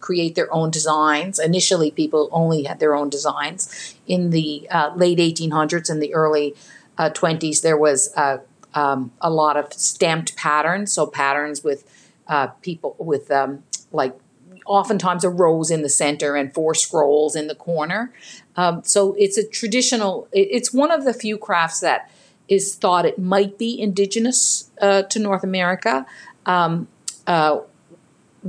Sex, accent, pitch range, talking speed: female, American, 145-195 Hz, 155 wpm